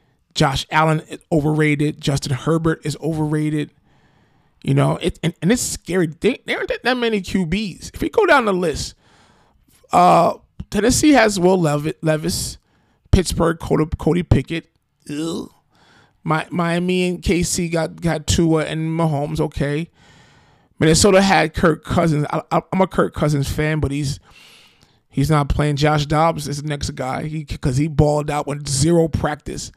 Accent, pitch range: American, 145-170 Hz